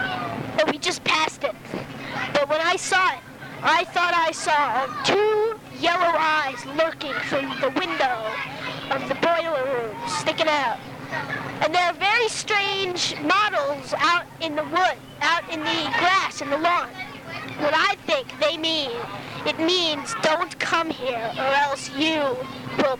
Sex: female